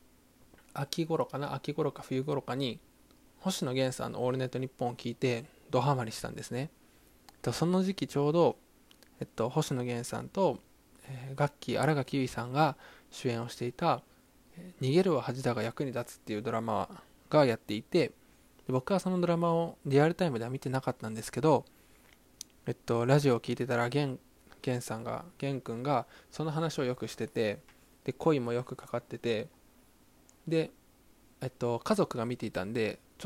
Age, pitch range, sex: 20-39, 120-150 Hz, male